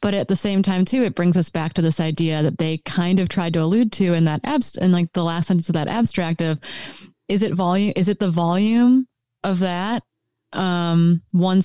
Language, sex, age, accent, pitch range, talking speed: English, female, 20-39, American, 165-200 Hz, 225 wpm